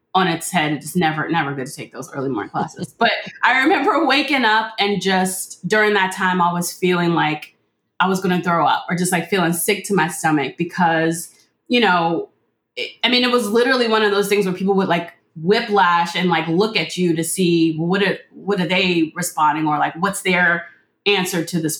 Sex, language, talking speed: female, English, 215 wpm